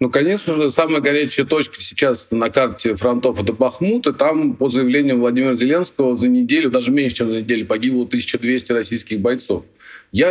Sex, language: male, Russian